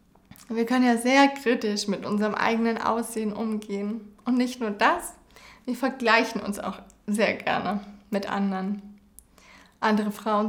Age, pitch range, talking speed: 20-39, 215-260 Hz, 135 wpm